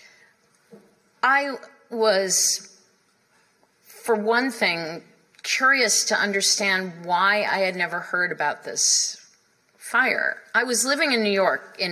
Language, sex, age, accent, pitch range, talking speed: English, female, 40-59, American, 175-220 Hz, 115 wpm